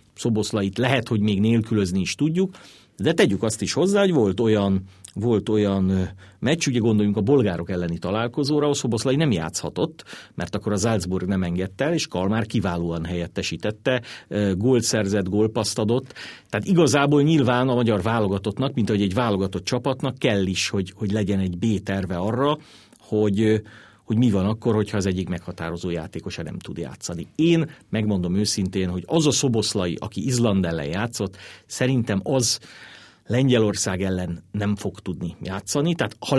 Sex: male